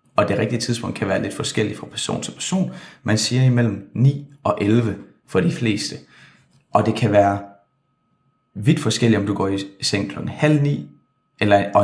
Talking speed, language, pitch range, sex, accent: 180 wpm, Danish, 100-130 Hz, male, native